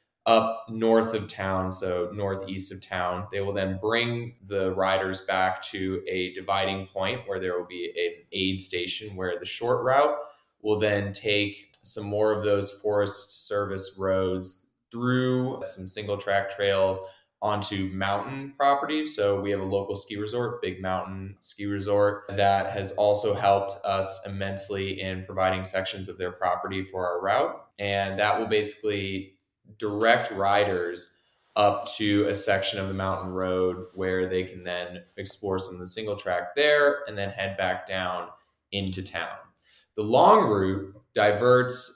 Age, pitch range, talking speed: 20-39, 95-105 Hz, 155 wpm